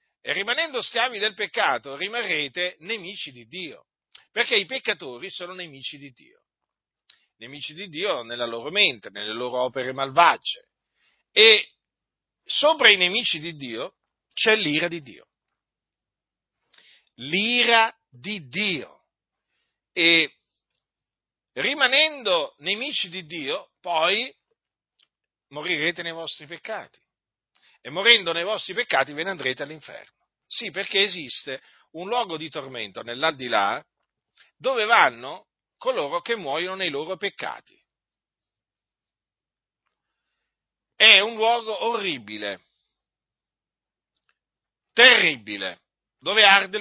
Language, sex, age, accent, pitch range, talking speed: Italian, male, 50-69, native, 150-230 Hz, 105 wpm